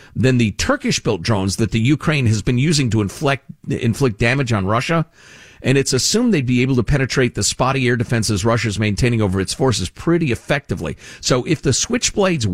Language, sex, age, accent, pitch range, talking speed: English, male, 50-69, American, 100-135 Hz, 190 wpm